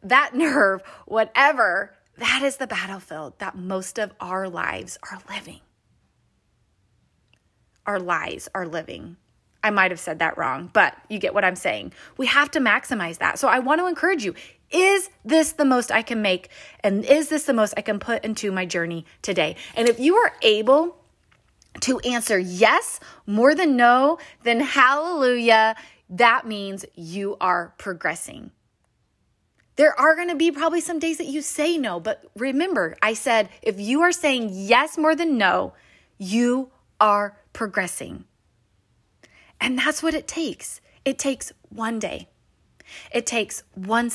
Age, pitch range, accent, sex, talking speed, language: 20-39, 195-285 Hz, American, female, 160 wpm, English